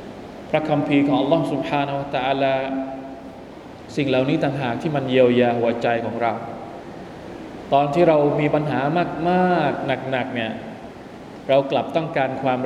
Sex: male